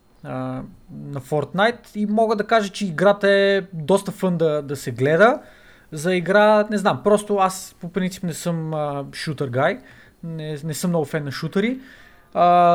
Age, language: 20-39, Bulgarian